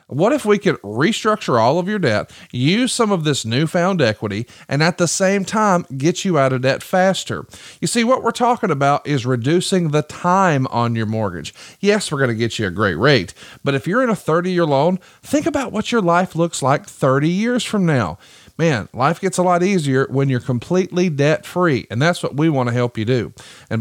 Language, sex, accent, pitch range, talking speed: English, male, American, 130-190 Hz, 220 wpm